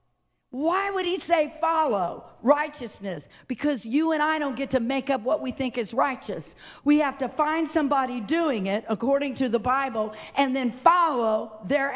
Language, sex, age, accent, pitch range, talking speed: English, female, 50-69, American, 250-310 Hz, 175 wpm